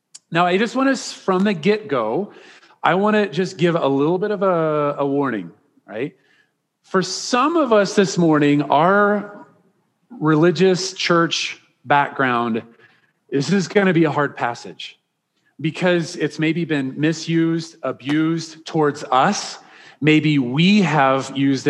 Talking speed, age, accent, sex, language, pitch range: 140 wpm, 40-59, American, male, English, 150-200 Hz